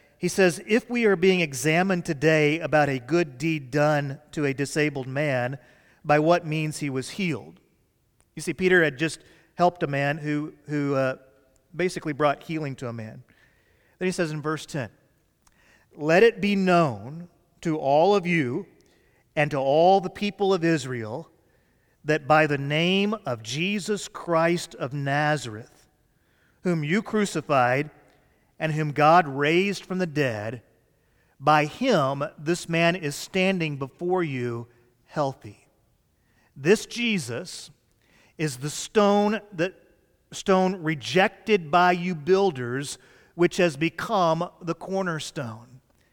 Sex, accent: male, American